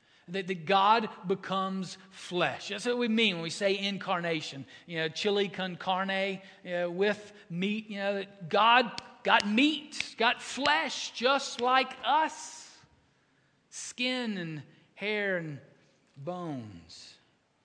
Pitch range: 180-250 Hz